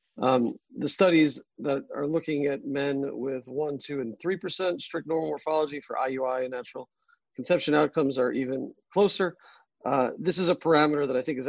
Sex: male